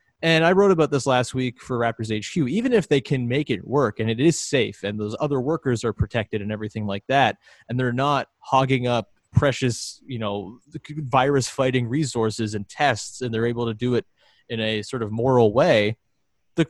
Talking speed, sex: 205 wpm, male